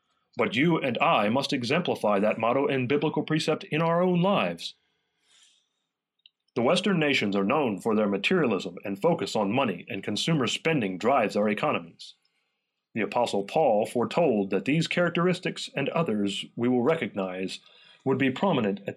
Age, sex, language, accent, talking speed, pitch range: 40-59, male, English, American, 155 wpm, 110-165 Hz